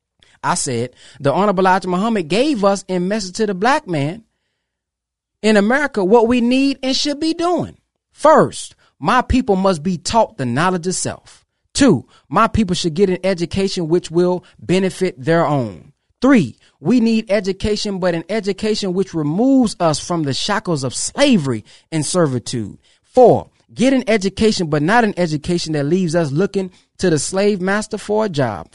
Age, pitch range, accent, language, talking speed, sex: 30-49, 165-220 Hz, American, English, 165 wpm, male